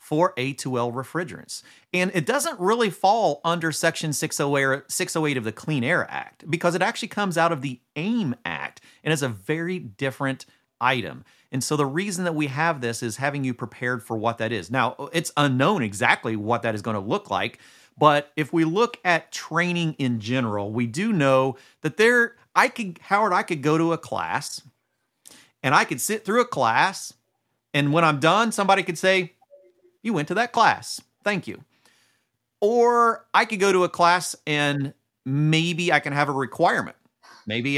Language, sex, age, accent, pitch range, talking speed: English, male, 40-59, American, 115-170 Hz, 185 wpm